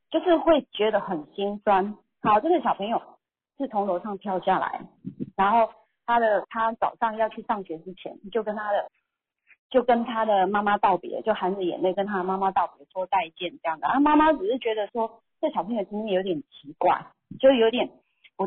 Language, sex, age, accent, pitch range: Chinese, female, 30-49, native, 185-250 Hz